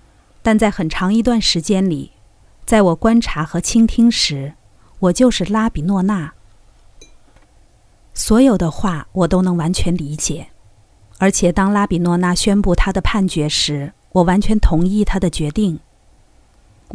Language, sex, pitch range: Chinese, female, 155-215 Hz